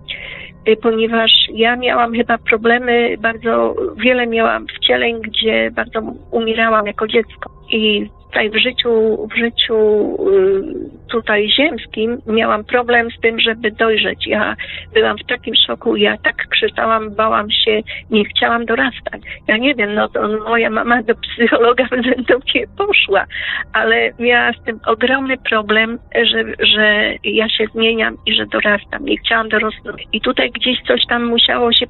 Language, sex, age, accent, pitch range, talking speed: Polish, female, 40-59, native, 220-250 Hz, 145 wpm